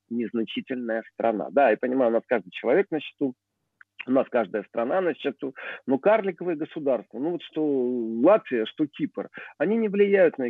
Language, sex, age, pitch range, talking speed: Russian, male, 40-59, 125-175 Hz, 170 wpm